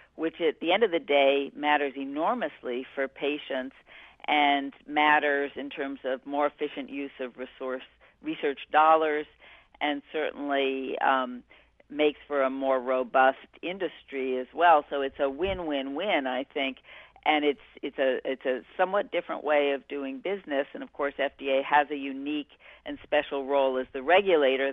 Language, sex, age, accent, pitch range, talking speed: English, female, 50-69, American, 135-155 Hz, 155 wpm